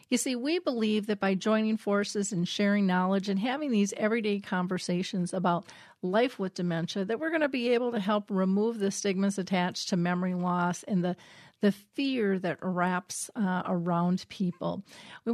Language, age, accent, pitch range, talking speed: English, 50-69, American, 190-225 Hz, 175 wpm